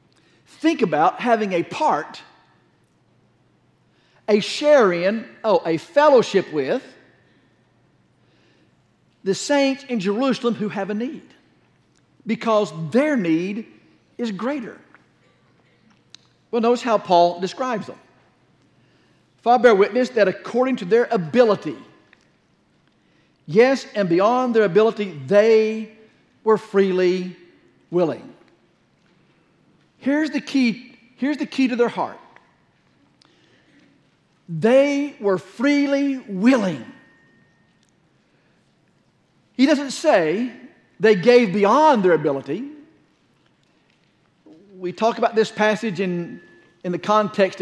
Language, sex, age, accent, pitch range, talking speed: English, male, 50-69, American, 185-245 Hz, 95 wpm